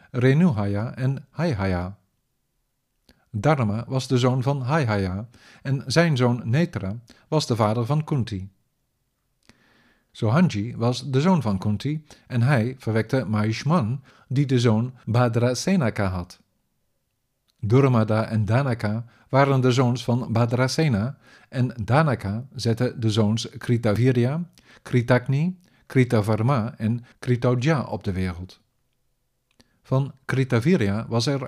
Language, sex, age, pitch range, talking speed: Dutch, male, 50-69, 110-135 Hz, 110 wpm